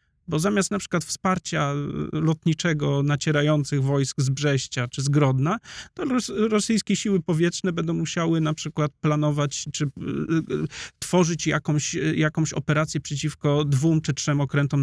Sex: male